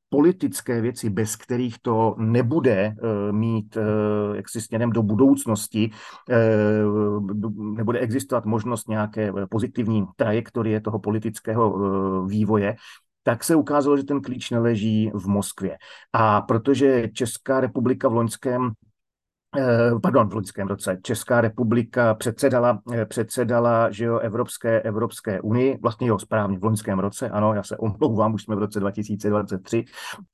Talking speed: 120 wpm